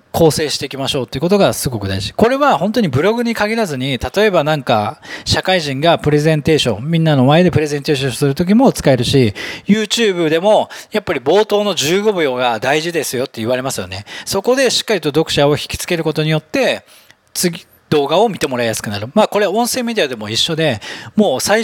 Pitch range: 135-210 Hz